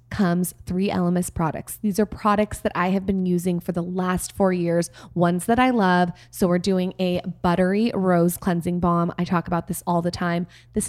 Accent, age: American, 20-39